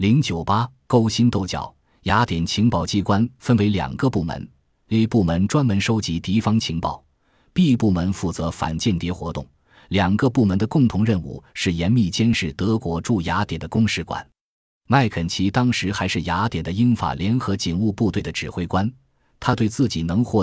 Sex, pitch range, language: male, 85-110 Hz, Chinese